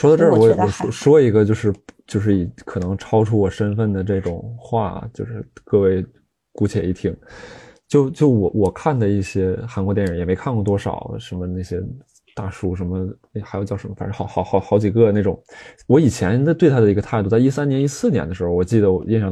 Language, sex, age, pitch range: Chinese, male, 20-39, 100-140 Hz